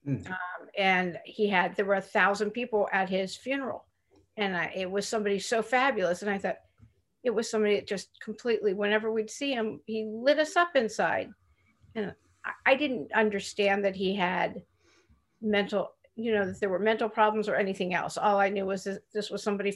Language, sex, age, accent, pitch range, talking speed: English, female, 50-69, American, 190-225 Hz, 195 wpm